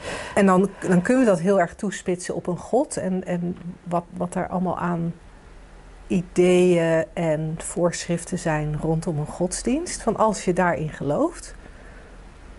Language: Dutch